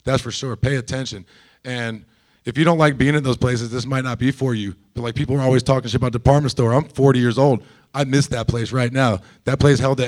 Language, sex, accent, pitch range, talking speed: English, male, American, 120-145 Hz, 260 wpm